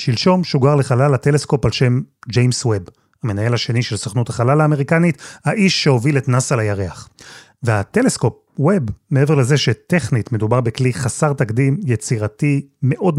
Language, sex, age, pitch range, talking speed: Hebrew, male, 30-49, 120-160 Hz, 135 wpm